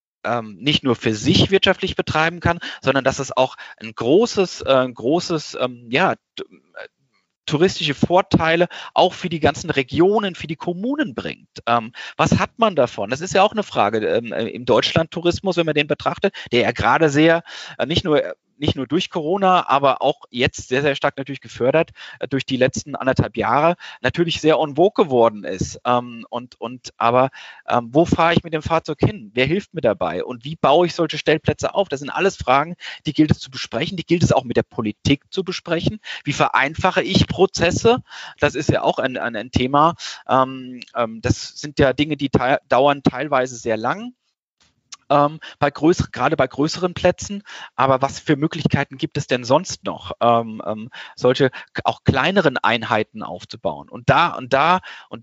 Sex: male